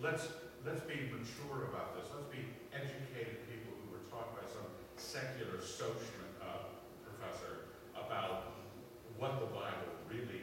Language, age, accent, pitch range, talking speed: English, 50-69, American, 120-170 Hz, 140 wpm